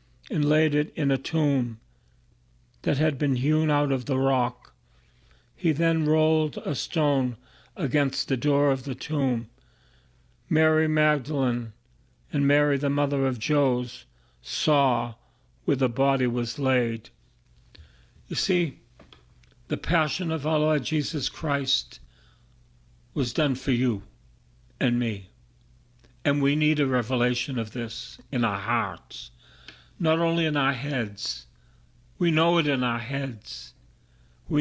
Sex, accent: male, American